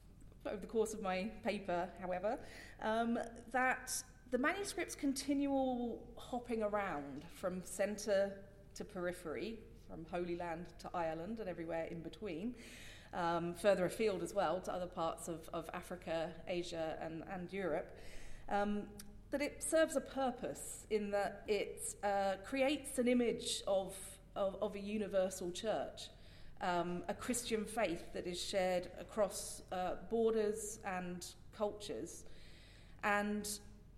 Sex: female